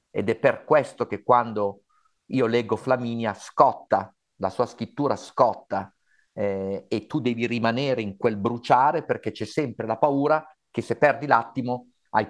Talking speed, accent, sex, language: 155 wpm, native, male, Italian